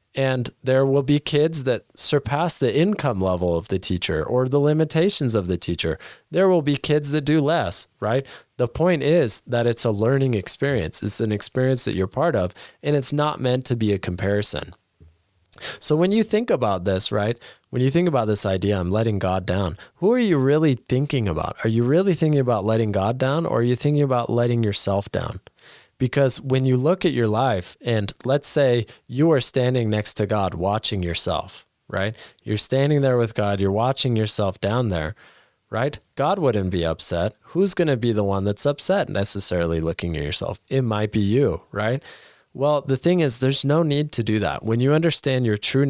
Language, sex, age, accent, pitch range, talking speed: English, male, 20-39, American, 100-140 Hz, 205 wpm